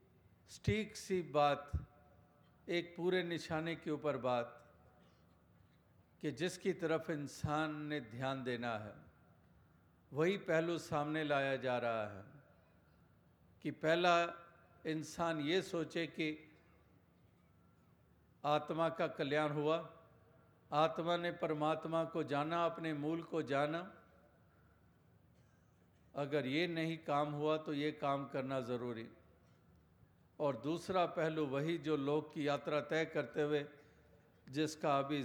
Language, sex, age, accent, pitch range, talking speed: Hindi, male, 50-69, native, 140-165 Hz, 110 wpm